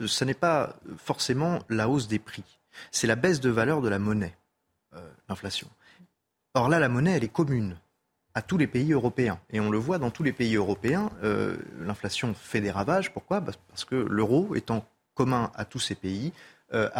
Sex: male